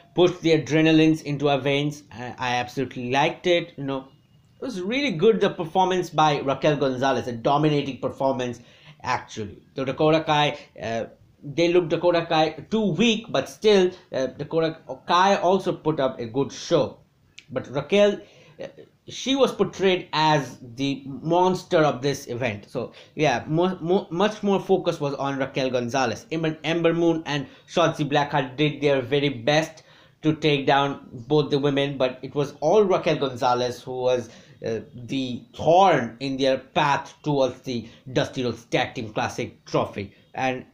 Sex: male